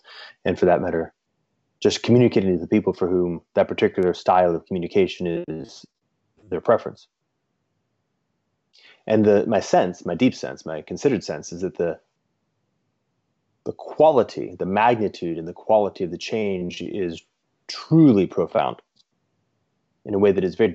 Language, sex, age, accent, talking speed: English, male, 30-49, American, 150 wpm